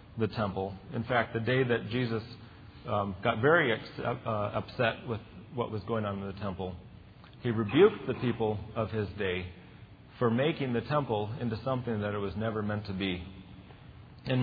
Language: English